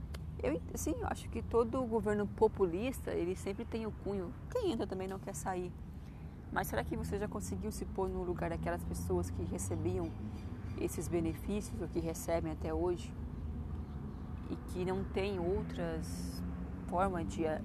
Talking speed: 160 wpm